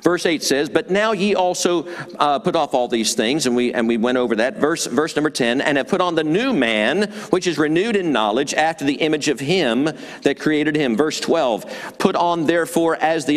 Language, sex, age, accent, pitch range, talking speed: English, male, 50-69, American, 125-190 Hz, 230 wpm